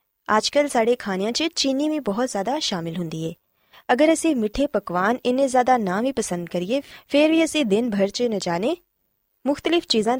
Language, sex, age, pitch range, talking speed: Punjabi, female, 20-39, 185-265 Hz, 180 wpm